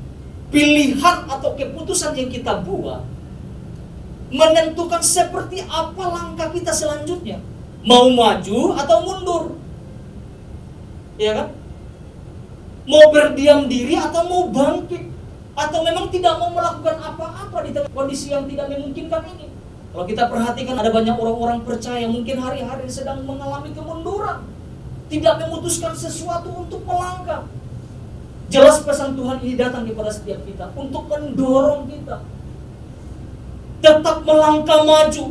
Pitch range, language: 235-330 Hz, Indonesian